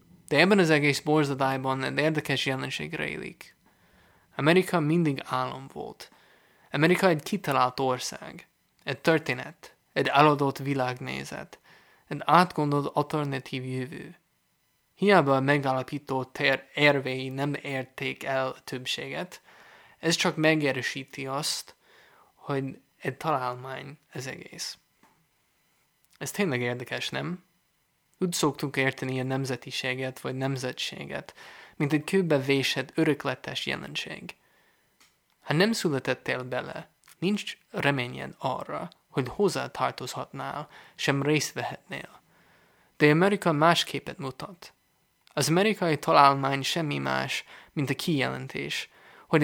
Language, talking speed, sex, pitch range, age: English, 105 wpm, male, 130-160 Hz, 20-39